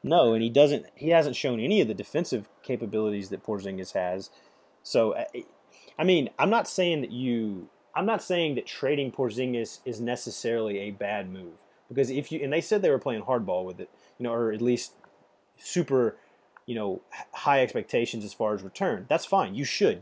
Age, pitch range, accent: 30-49, 110-140 Hz, American